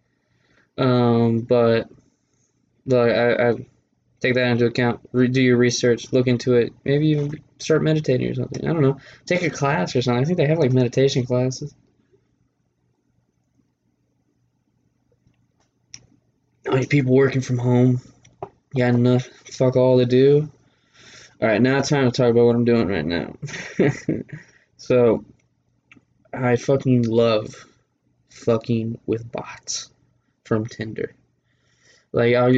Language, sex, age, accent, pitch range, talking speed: English, male, 20-39, American, 115-150 Hz, 135 wpm